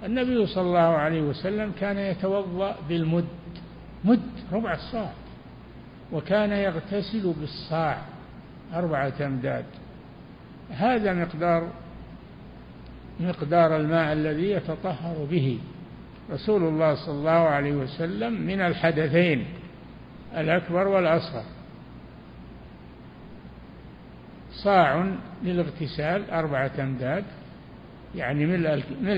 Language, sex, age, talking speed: Arabic, male, 60-79, 80 wpm